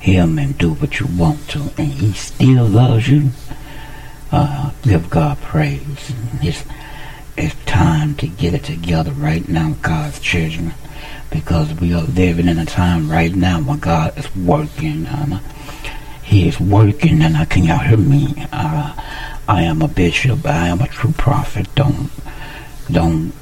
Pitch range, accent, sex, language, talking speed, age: 95-150 Hz, American, male, English, 160 wpm, 60-79